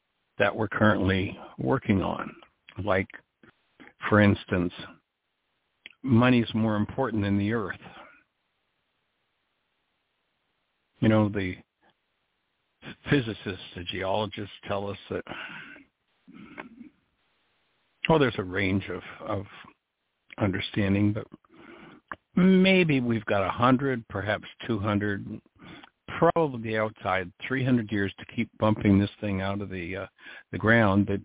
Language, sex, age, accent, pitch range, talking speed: English, male, 60-79, American, 95-115 Hz, 110 wpm